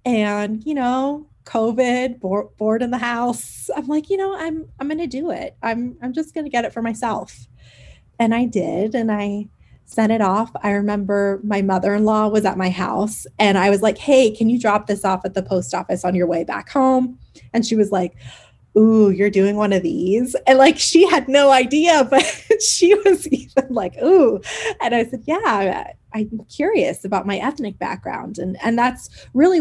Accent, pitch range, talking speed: American, 190-255 Hz, 200 wpm